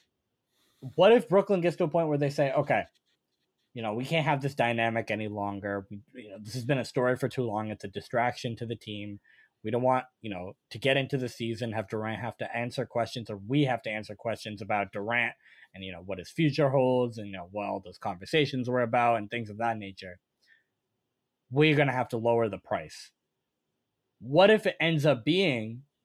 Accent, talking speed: American, 220 wpm